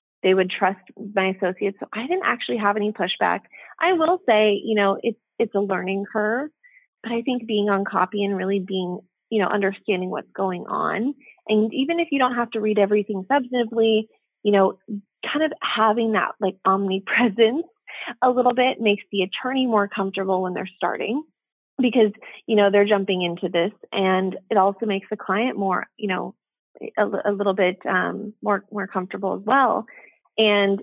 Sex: female